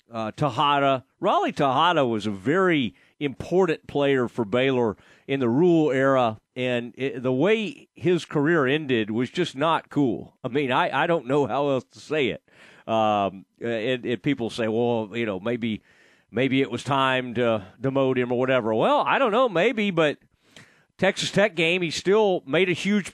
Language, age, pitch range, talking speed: English, 40-59, 125-175 Hz, 180 wpm